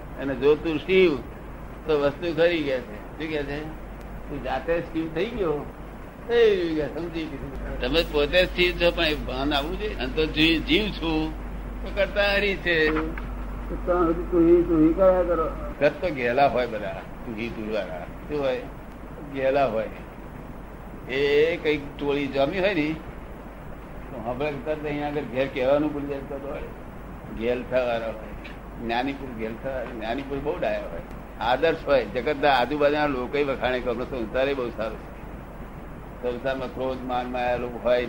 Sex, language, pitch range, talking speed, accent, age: male, Gujarati, 125-160 Hz, 75 wpm, native, 60-79